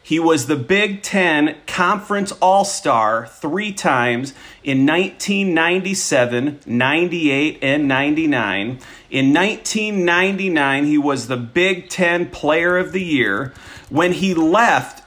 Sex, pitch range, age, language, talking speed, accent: male, 140-180 Hz, 40-59, English, 110 wpm, American